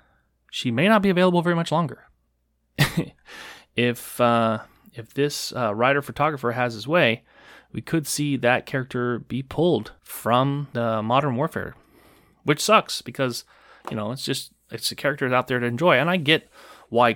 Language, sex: English, male